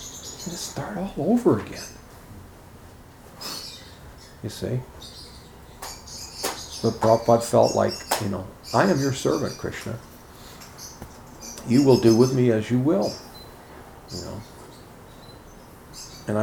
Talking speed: 100 wpm